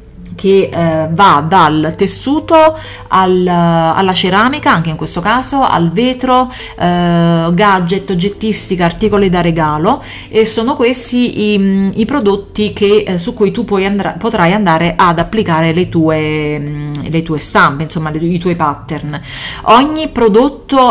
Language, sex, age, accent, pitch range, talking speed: Italian, female, 30-49, native, 170-210 Hz, 140 wpm